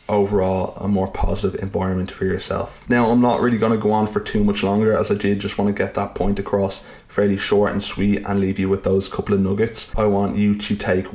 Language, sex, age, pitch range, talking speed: English, male, 20-39, 95-105 Hz, 250 wpm